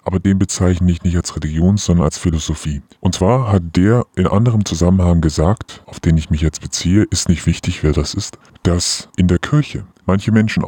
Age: 30-49